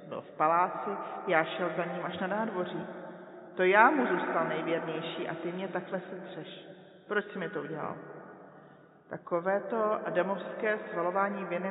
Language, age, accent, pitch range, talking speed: Czech, 40-59, native, 160-195 Hz, 155 wpm